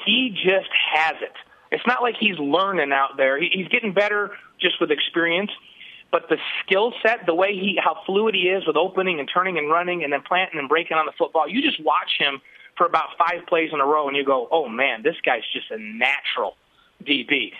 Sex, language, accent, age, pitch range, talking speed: male, English, American, 30-49, 155-210 Hz, 220 wpm